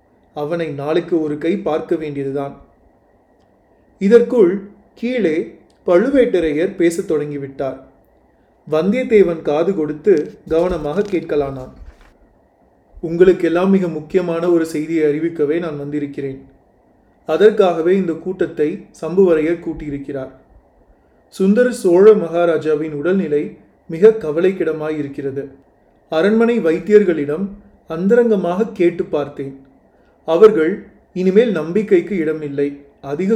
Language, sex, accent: Tamil, male, native